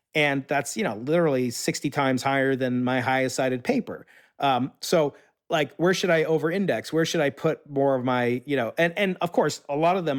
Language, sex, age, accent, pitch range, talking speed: English, male, 40-59, American, 130-160 Hz, 220 wpm